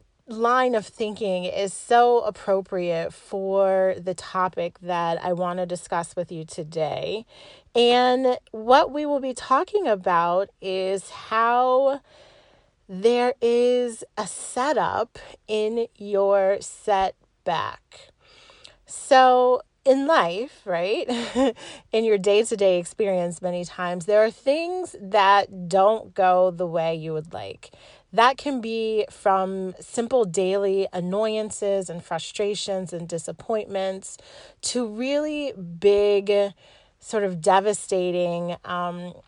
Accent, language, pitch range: American, English, 180-240 Hz